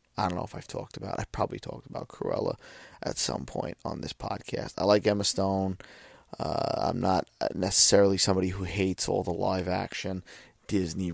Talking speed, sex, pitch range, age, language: 185 wpm, male, 95-110 Hz, 30-49, English